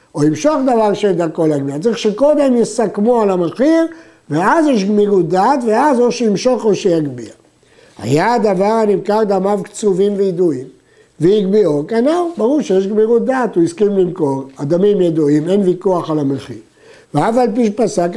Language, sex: Hebrew, male